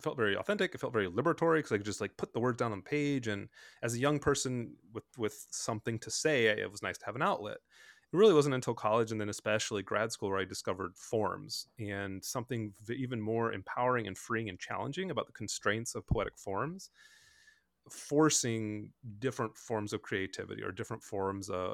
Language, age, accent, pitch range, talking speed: English, 30-49, American, 105-130 Hz, 210 wpm